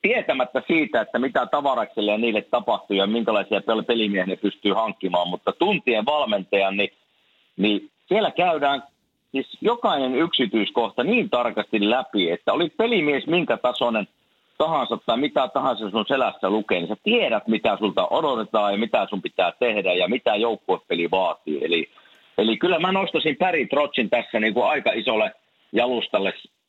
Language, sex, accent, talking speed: Finnish, male, native, 150 wpm